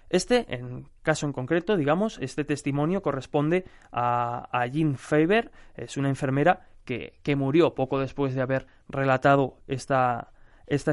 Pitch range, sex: 130-160 Hz, male